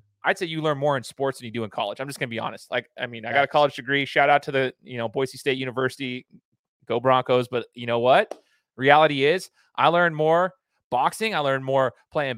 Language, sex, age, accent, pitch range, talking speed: English, male, 20-39, American, 130-160 Hz, 245 wpm